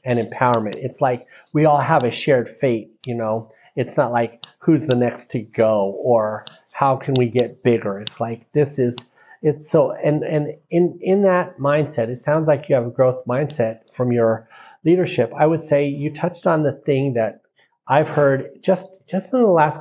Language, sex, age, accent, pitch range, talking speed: English, male, 40-59, American, 120-160 Hz, 195 wpm